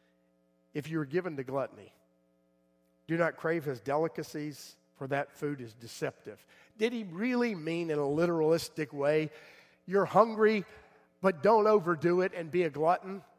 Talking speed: 150 wpm